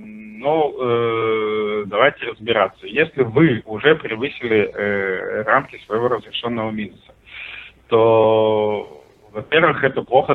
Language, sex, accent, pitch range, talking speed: Russian, male, native, 105-125 Hz, 105 wpm